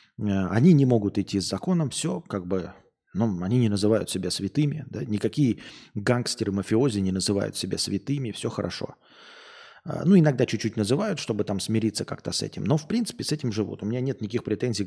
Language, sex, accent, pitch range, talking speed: Russian, male, native, 100-140 Hz, 180 wpm